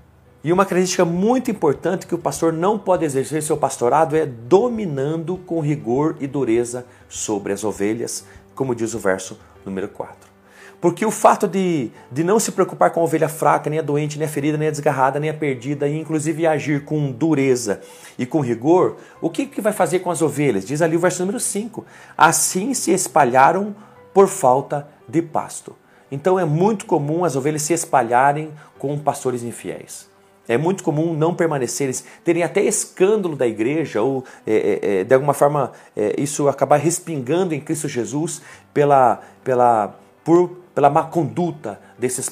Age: 40-59